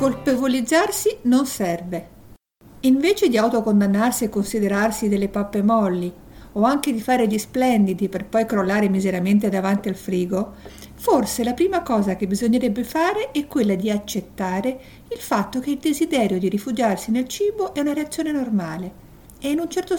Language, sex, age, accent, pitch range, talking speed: Italian, female, 50-69, native, 195-275 Hz, 155 wpm